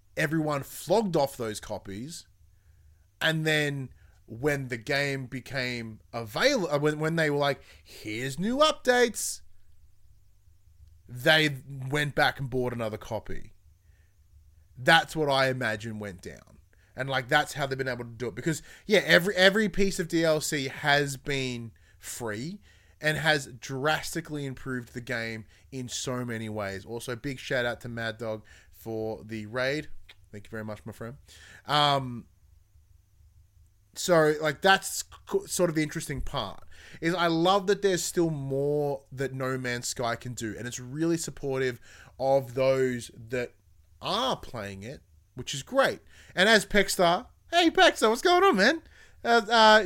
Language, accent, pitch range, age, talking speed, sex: English, Australian, 110-155 Hz, 30-49, 150 wpm, male